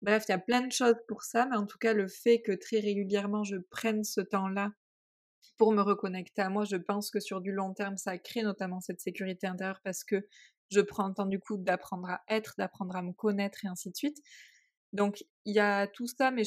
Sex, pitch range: female, 185-210 Hz